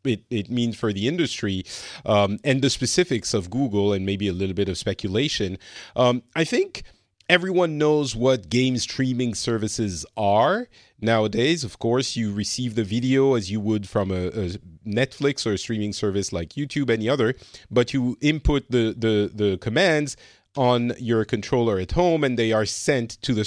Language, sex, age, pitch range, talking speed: English, male, 40-59, 105-135 Hz, 175 wpm